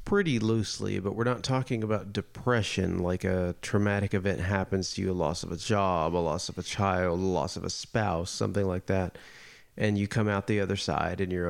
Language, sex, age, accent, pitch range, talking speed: English, male, 30-49, American, 95-110 Hz, 220 wpm